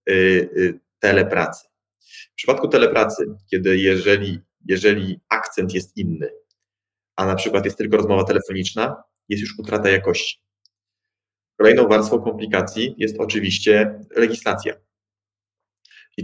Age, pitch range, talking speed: 20-39, 95-115 Hz, 105 wpm